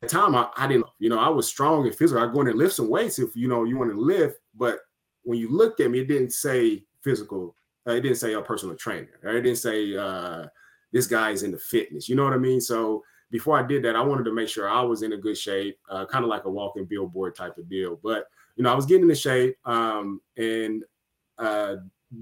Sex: male